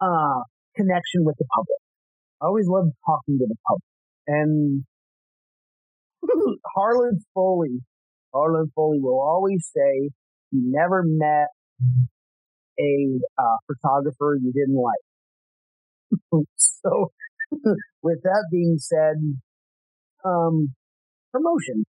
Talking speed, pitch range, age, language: 100 wpm, 145-195 Hz, 40-59, English